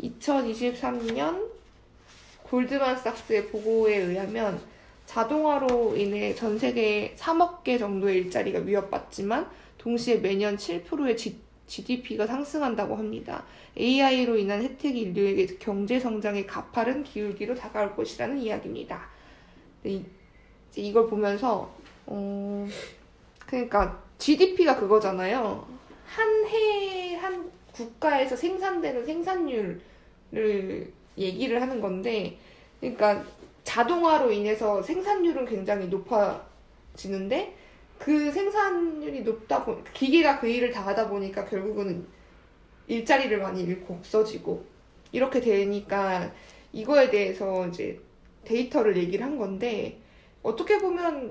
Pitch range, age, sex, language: 205-280 Hz, 20-39, female, Korean